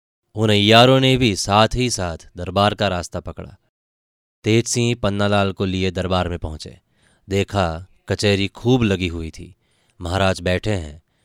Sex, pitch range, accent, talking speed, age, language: male, 90-110 Hz, native, 150 wpm, 20-39, Hindi